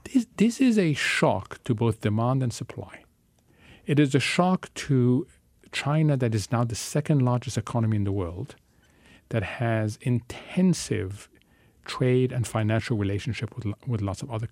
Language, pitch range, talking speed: English, 110-155 Hz, 155 wpm